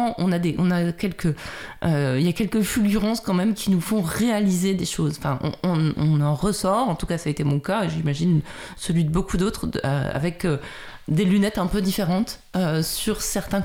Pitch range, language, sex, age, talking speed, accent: 150-195 Hz, French, female, 30-49, 200 wpm, French